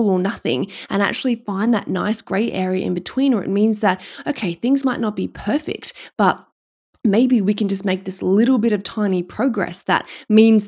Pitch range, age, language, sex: 185-245 Hz, 20-39, English, female